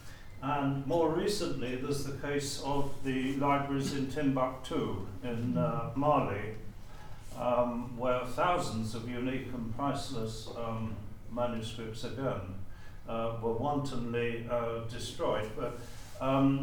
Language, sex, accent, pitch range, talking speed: English, male, British, 110-135 Hz, 110 wpm